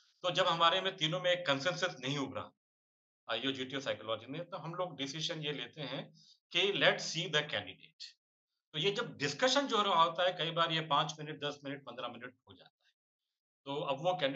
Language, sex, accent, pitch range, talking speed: Hindi, male, native, 135-180 Hz, 65 wpm